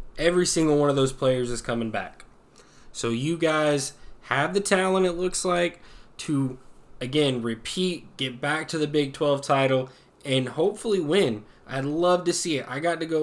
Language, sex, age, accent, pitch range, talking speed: English, male, 20-39, American, 130-155 Hz, 180 wpm